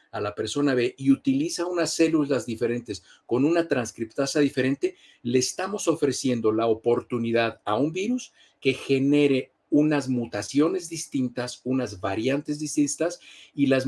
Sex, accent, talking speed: male, Mexican, 135 wpm